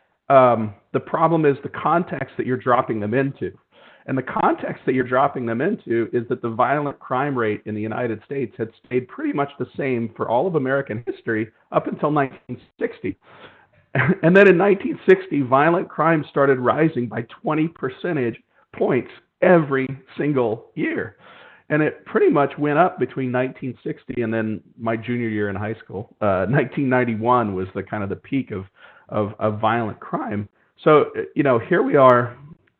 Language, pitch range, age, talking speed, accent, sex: English, 110-145 Hz, 40-59, 170 wpm, American, male